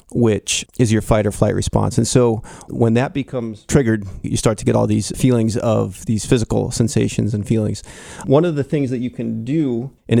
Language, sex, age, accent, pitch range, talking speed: English, male, 30-49, American, 105-120 Hz, 205 wpm